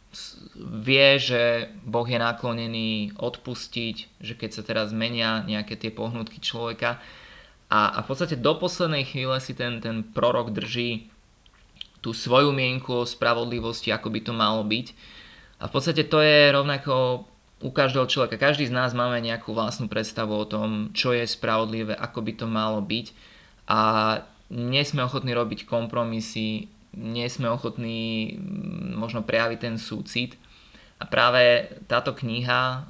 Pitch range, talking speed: 110-125 Hz, 145 wpm